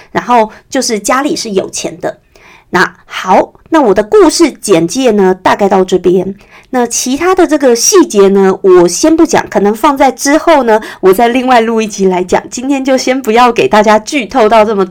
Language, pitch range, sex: Chinese, 205-290 Hz, female